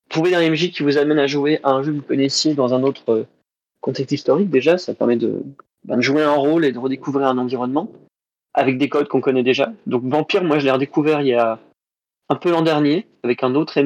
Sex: male